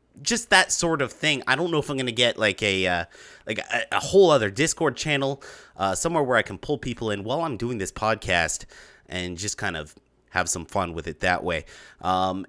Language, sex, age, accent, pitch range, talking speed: English, male, 30-49, American, 100-155 Hz, 230 wpm